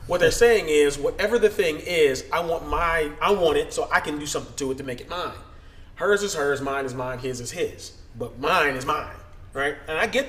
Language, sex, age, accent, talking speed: English, male, 30-49, American, 245 wpm